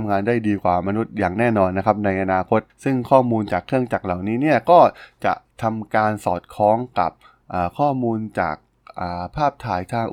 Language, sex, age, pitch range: Thai, male, 20-39, 95-120 Hz